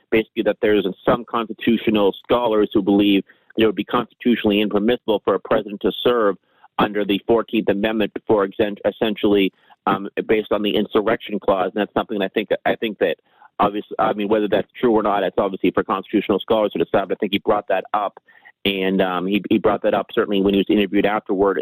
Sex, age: male, 40-59